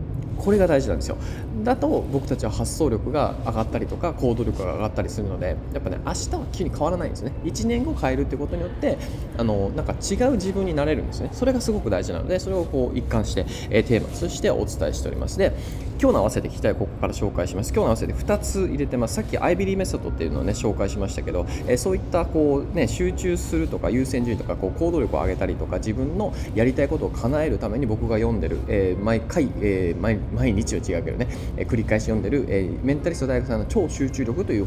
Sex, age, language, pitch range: male, 20-39, Japanese, 100-130 Hz